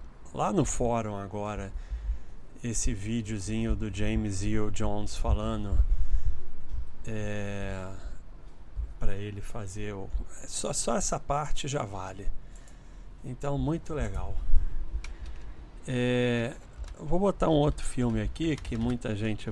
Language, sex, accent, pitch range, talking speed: Portuguese, male, Brazilian, 95-125 Hz, 115 wpm